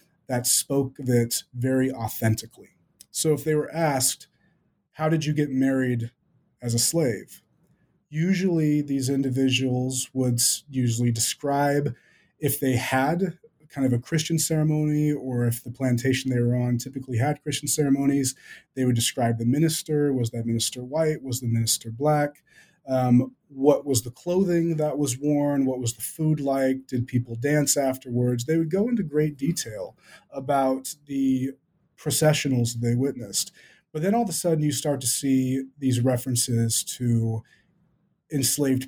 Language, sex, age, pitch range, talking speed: English, male, 30-49, 120-150 Hz, 155 wpm